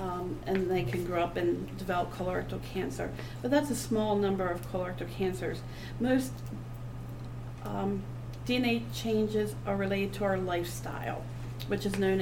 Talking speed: 145 wpm